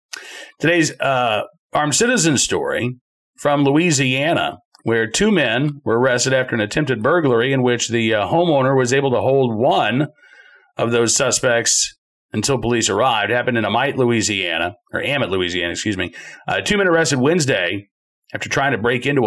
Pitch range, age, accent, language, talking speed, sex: 110-145 Hz, 40-59, American, English, 160 wpm, male